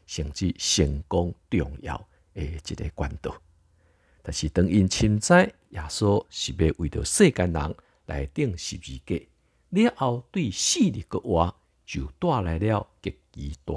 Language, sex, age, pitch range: Chinese, male, 50-69, 75-105 Hz